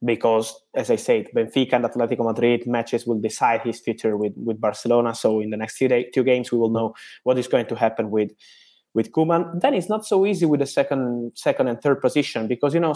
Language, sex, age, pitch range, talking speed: English, male, 20-39, 115-145 Hz, 225 wpm